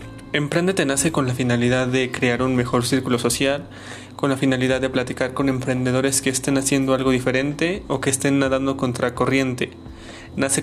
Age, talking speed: 20-39, 170 wpm